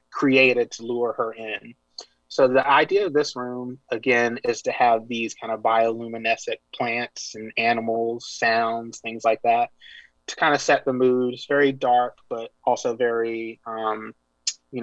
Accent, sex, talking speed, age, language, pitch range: American, male, 160 wpm, 30-49, English, 115-130 Hz